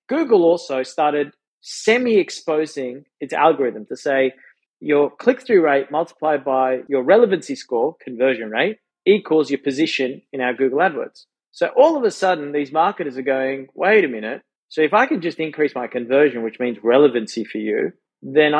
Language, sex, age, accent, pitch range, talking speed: English, male, 30-49, Australian, 130-160 Hz, 165 wpm